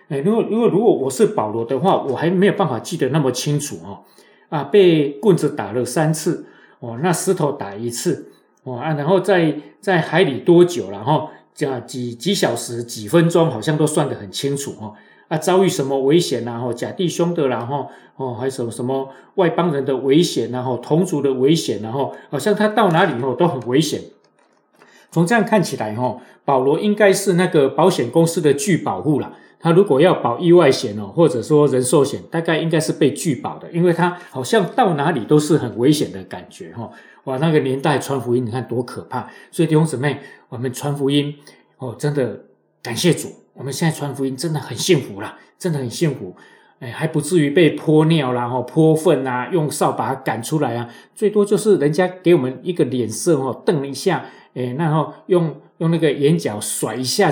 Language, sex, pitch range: Chinese, male, 130-170 Hz